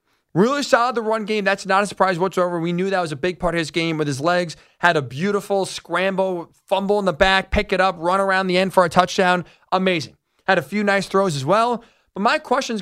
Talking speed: 245 wpm